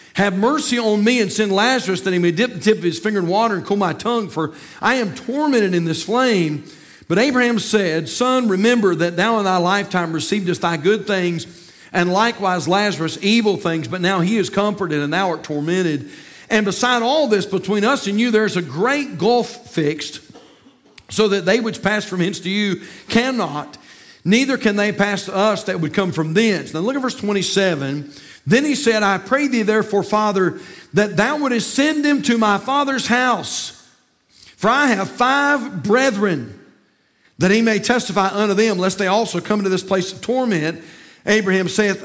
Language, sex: English, male